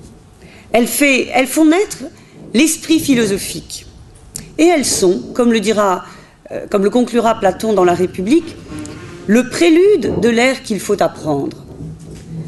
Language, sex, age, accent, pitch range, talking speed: French, female, 40-59, French, 195-315 Hz, 110 wpm